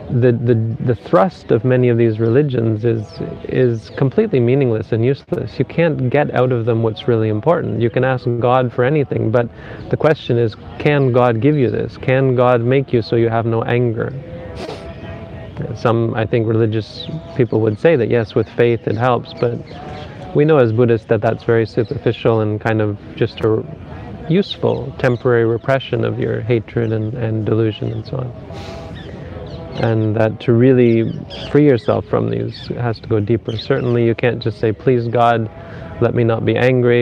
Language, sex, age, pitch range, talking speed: English, male, 30-49, 110-125 Hz, 180 wpm